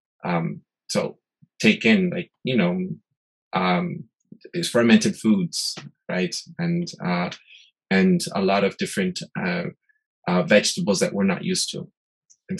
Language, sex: English, male